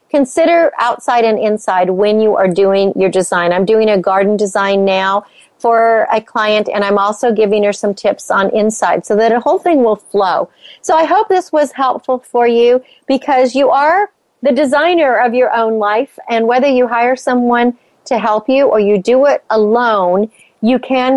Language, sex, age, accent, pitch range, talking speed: English, female, 40-59, American, 205-260 Hz, 190 wpm